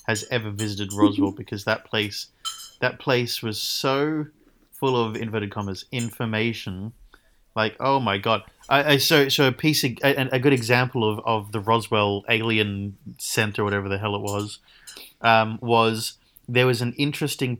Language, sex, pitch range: English, male, 105-125 Hz